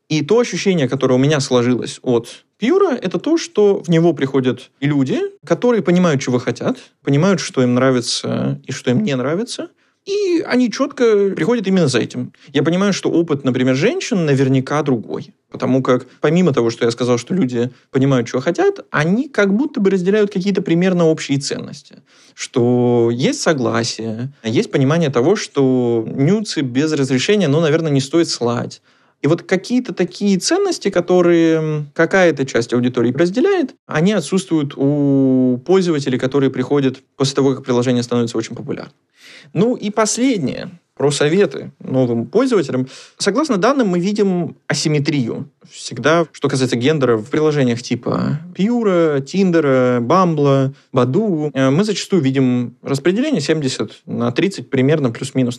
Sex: male